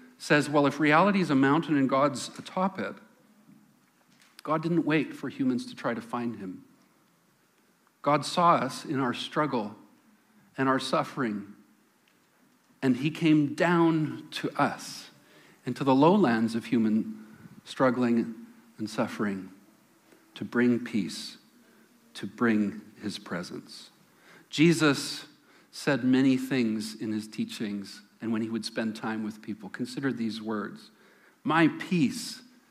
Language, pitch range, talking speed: English, 120-195 Hz, 130 wpm